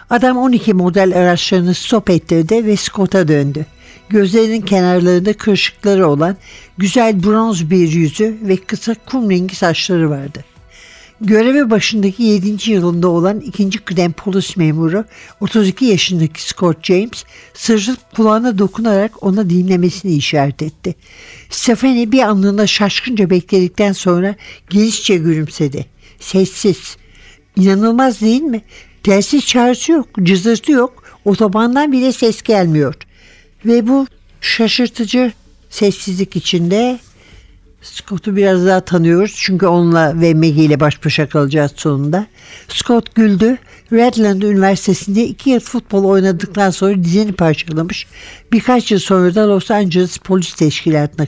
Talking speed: 115 wpm